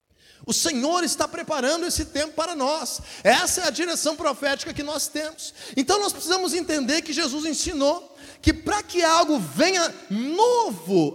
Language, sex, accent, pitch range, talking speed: Portuguese, male, Brazilian, 230-325 Hz, 155 wpm